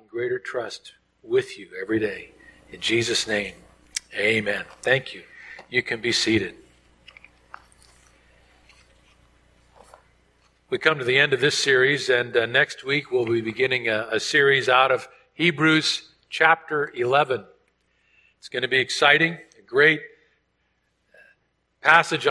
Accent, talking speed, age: American, 125 wpm, 50-69